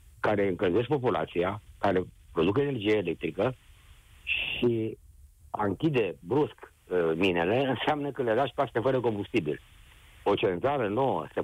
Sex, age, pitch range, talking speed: male, 50-69, 85-120 Hz, 115 wpm